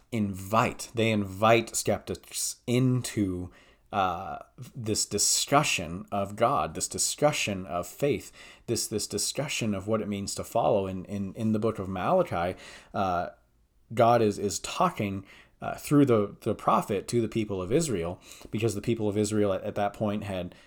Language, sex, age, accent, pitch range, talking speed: English, male, 30-49, American, 100-120 Hz, 160 wpm